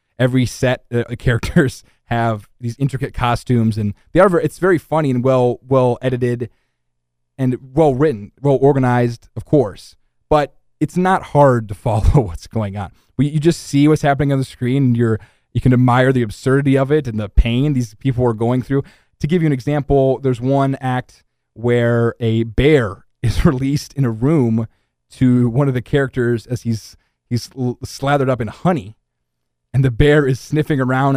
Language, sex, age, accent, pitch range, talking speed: English, male, 20-39, American, 115-145 Hz, 185 wpm